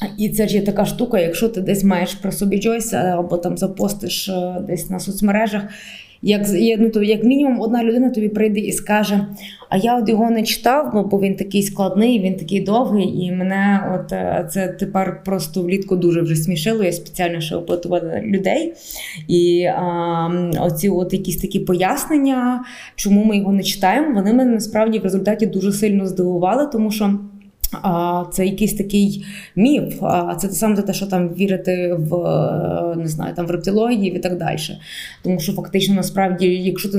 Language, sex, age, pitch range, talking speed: Ukrainian, female, 20-39, 185-215 Hz, 165 wpm